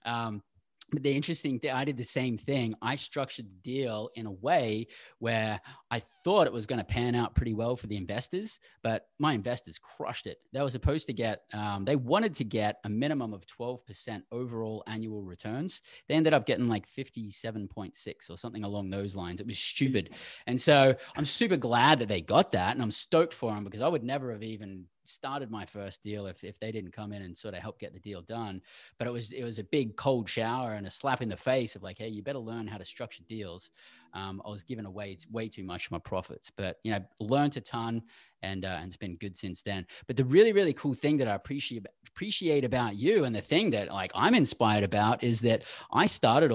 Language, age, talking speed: English, 20-39, 230 wpm